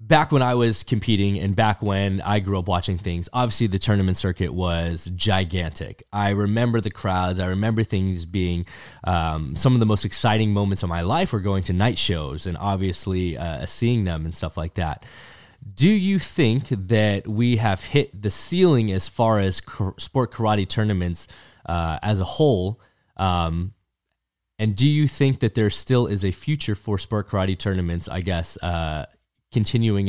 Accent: American